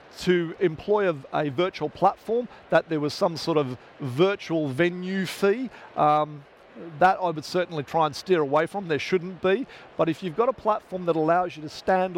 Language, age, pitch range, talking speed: English, 50-69, 155-185 Hz, 190 wpm